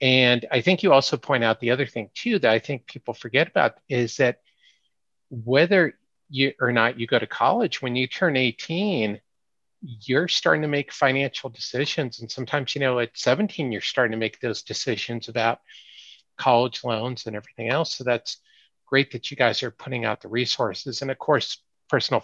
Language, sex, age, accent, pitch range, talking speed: English, male, 50-69, American, 115-140 Hz, 190 wpm